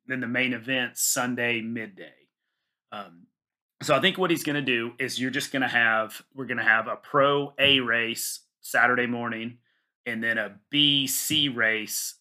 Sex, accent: male, American